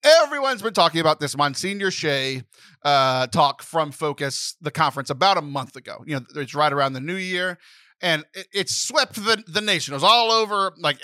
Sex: male